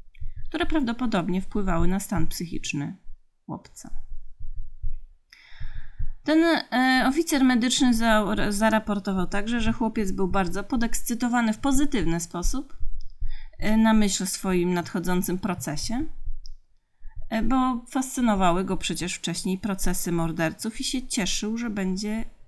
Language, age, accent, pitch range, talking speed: Polish, 30-49, native, 175-225 Hz, 100 wpm